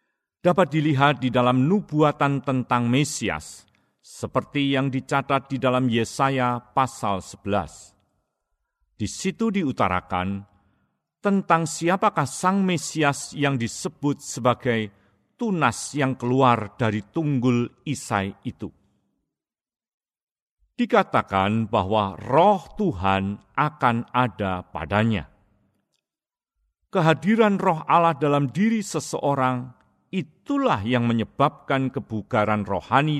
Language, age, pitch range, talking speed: Indonesian, 50-69, 105-155 Hz, 90 wpm